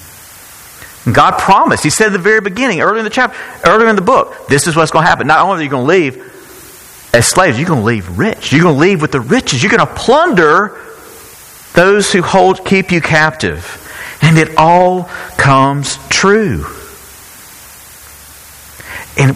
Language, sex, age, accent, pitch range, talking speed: English, male, 50-69, American, 115-180 Hz, 185 wpm